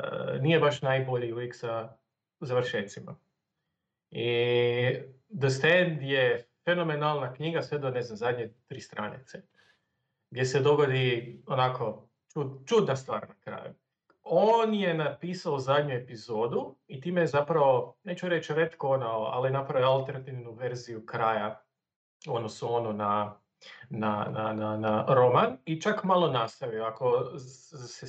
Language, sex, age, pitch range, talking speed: Croatian, male, 40-59, 120-155 Hz, 130 wpm